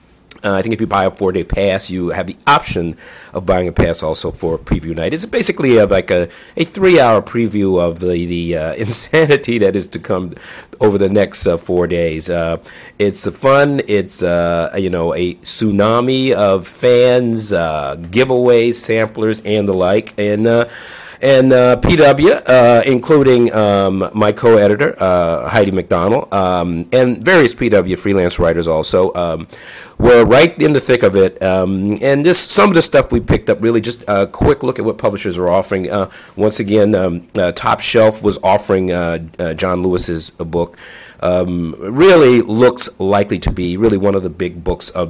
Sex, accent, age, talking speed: male, American, 50-69, 180 wpm